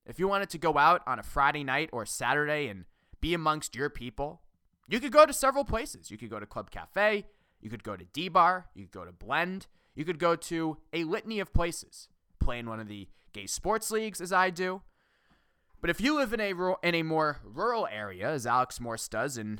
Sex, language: male, English